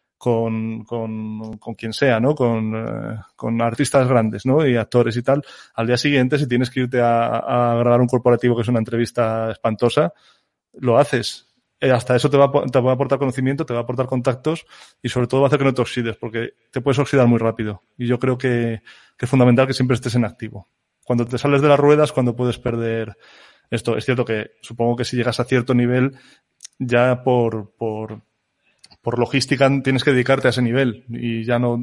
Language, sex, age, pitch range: Spanish, male, 20-39, 120-135 Hz